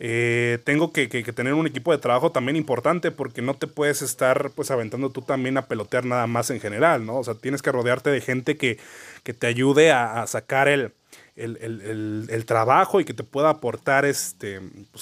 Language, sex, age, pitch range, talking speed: Spanish, male, 20-39, 120-150 Hz, 220 wpm